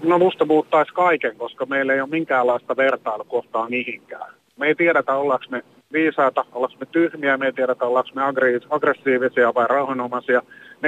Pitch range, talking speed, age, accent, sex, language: 125-150 Hz, 155 wpm, 30-49, native, male, Finnish